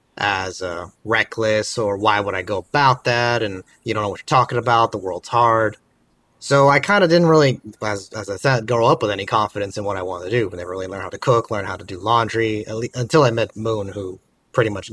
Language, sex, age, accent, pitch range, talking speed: English, male, 30-49, American, 105-130 Hz, 255 wpm